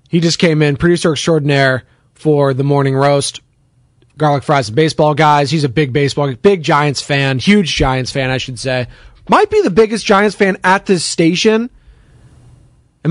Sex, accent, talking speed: male, American, 175 wpm